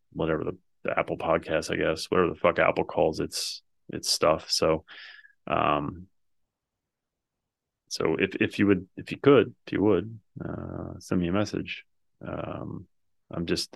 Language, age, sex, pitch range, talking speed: English, 30-49, male, 90-120 Hz, 155 wpm